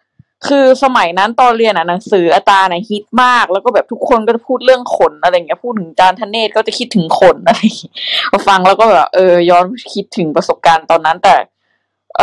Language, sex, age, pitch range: Thai, female, 20-39, 165-245 Hz